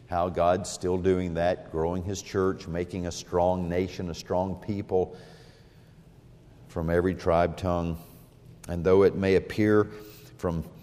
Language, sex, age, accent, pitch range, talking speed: English, male, 50-69, American, 85-105 Hz, 140 wpm